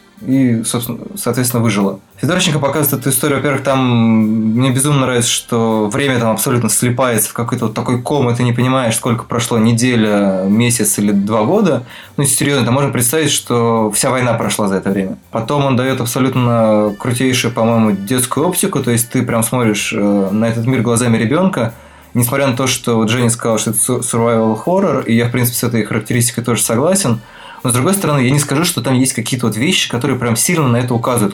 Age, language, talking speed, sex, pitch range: 20-39, Russian, 195 wpm, male, 110-130 Hz